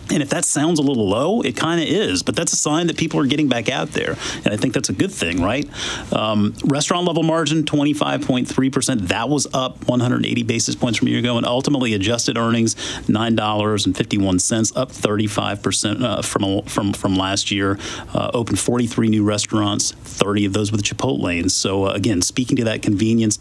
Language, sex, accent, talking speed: English, male, American, 205 wpm